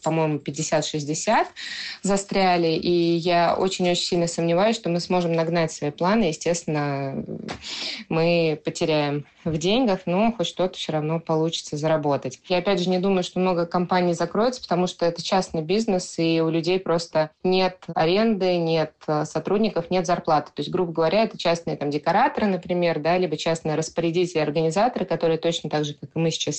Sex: female